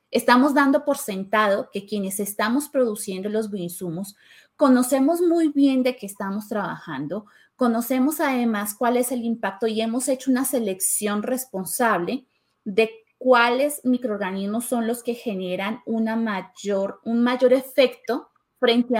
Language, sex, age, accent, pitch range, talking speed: Spanish, female, 20-39, Colombian, 200-250 Hz, 125 wpm